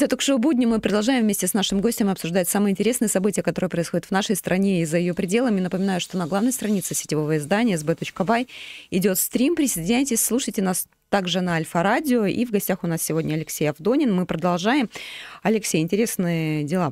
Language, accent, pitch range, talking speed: Russian, native, 165-215 Hz, 180 wpm